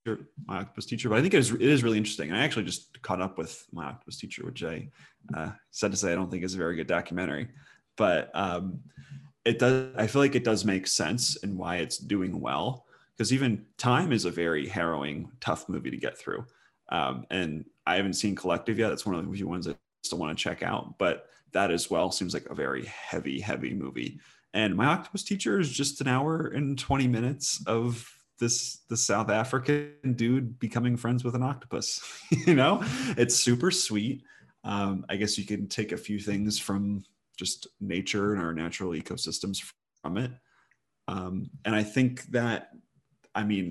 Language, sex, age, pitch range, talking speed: English, male, 30-49, 95-125 Hz, 200 wpm